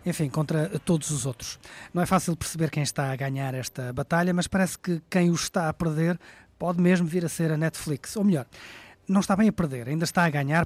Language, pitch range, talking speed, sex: Portuguese, 150-180 Hz, 230 wpm, male